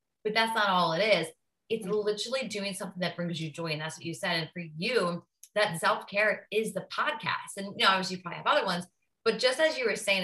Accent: American